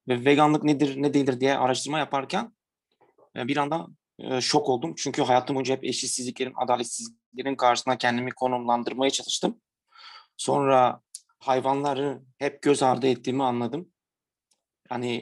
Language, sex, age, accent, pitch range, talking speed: Turkish, male, 30-49, native, 130-170 Hz, 120 wpm